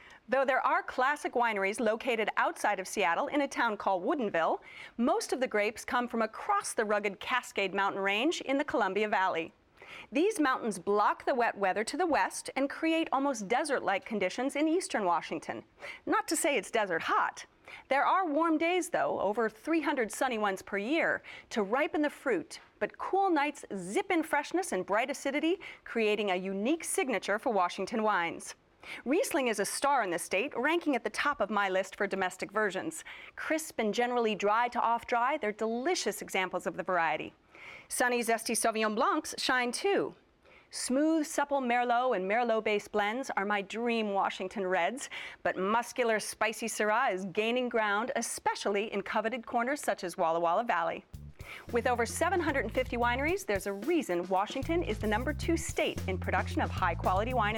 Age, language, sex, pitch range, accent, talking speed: 40-59, English, female, 205-290 Hz, American, 170 wpm